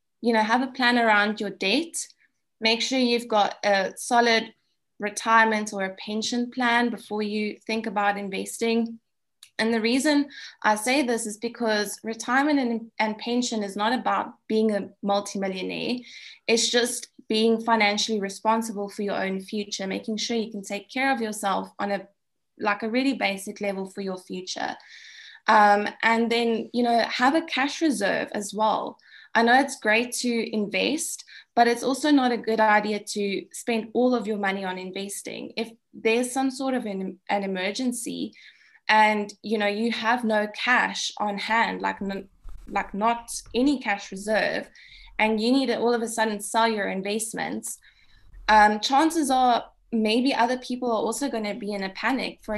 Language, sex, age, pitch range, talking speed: English, female, 20-39, 210-245 Hz, 170 wpm